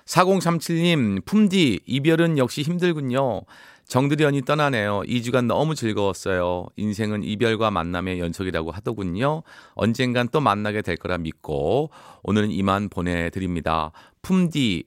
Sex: male